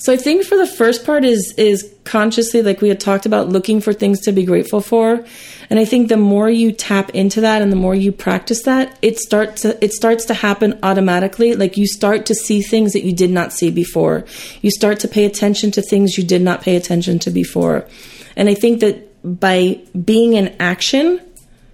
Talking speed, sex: 220 wpm, female